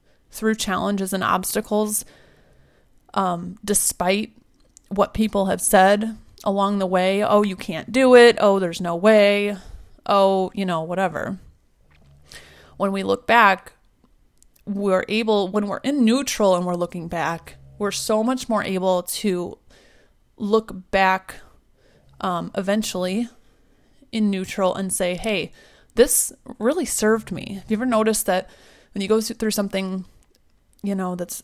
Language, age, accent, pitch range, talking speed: English, 30-49, American, 185-220 Hz, 135 wpm